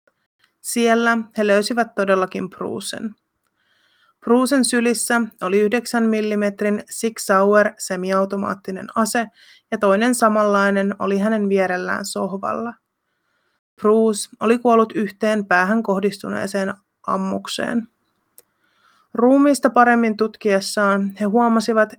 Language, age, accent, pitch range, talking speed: Finnish, 30-49, native, 195-230 Hz, 90 wpm